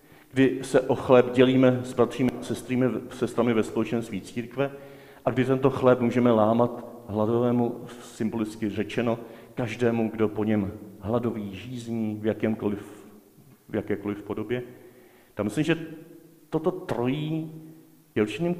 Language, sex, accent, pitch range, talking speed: Czech, male, native, 115-140 Hz, 120 wpm